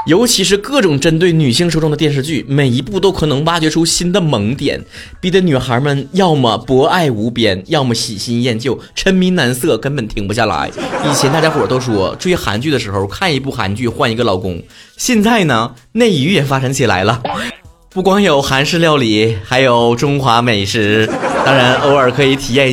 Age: 20-39